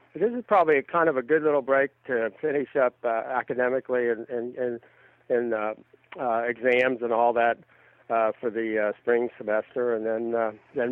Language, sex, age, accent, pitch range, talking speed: English, male, 60-79, American, 115-135 Hz, 185 wpm